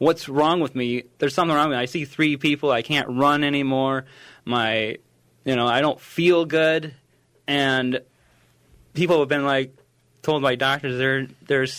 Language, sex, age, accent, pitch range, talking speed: English, male, 30-49, American, 125-145 Hz, 175 wpm